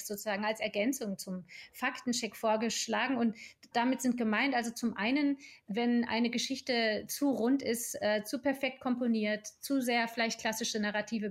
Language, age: German, 30-49